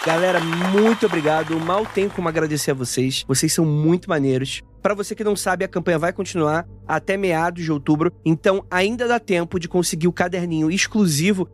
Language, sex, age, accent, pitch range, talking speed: Portuguese, male, 20-39, Brazilian, 160-205 Hz, 180 wpm